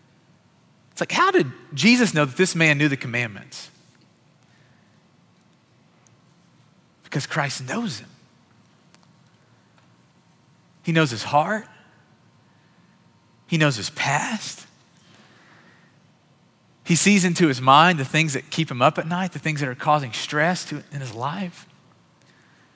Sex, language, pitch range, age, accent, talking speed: male, English, 135-170 Hz, 30-49, American, 120 wpm